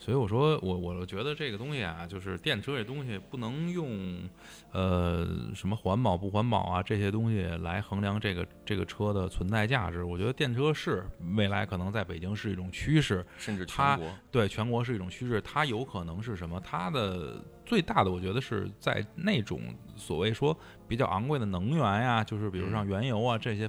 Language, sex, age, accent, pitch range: Chinese, male, 20-39, native, 95-125 Hz